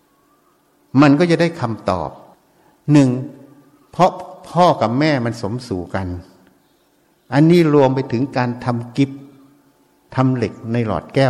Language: Thai